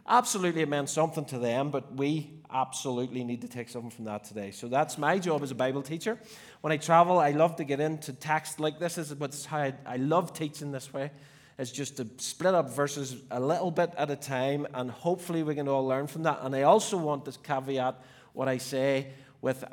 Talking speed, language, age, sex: 220 wpm, English, 30-49, male